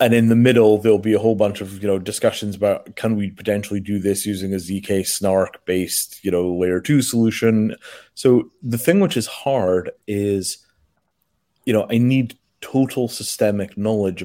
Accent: British